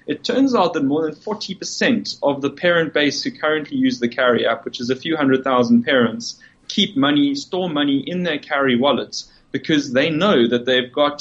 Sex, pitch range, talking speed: male, 120-165 Hz, 205 wpm